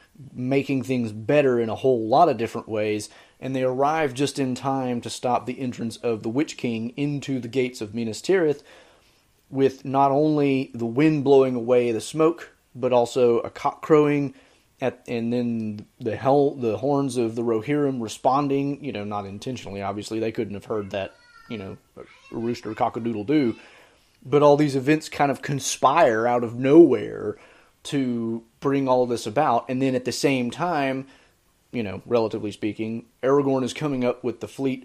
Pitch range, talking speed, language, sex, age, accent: 115-140 Hz, 175 wpm, English, male, 30-49, American